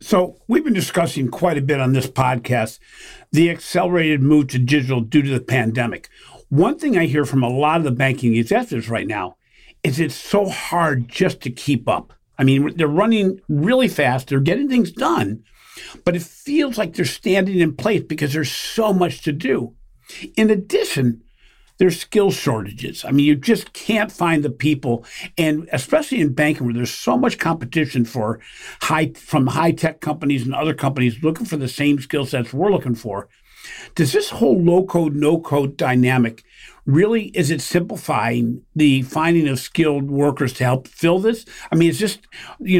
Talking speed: 180 wpm